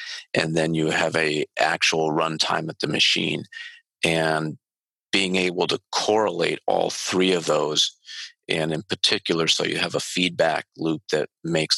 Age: 40-59